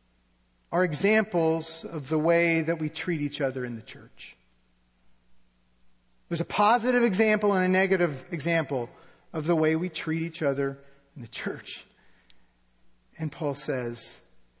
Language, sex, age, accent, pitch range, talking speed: English, male, 50-69, American, 135-215 Hz, 140 wpm